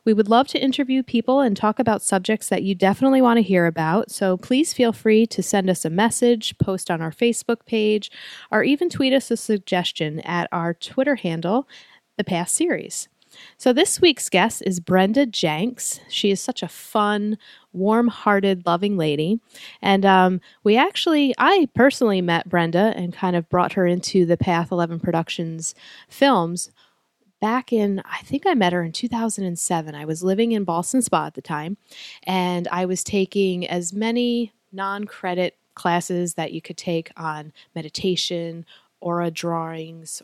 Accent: American